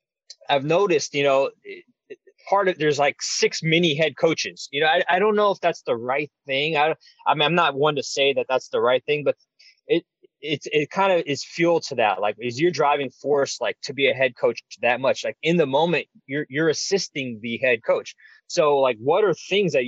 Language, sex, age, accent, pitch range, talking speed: English, male, 20-39, American, 135-220 Hz, 225 wpm